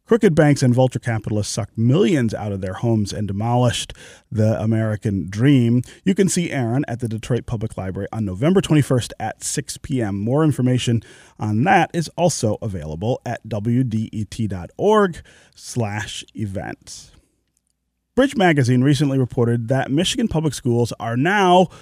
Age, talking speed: 30-49, 145 wpm